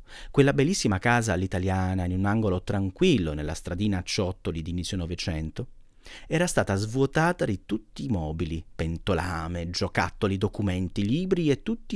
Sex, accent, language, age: male, native, Italian, 40-59